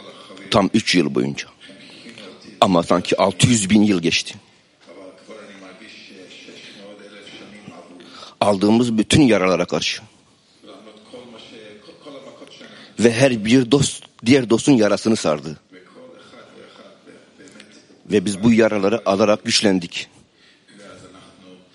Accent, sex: native, male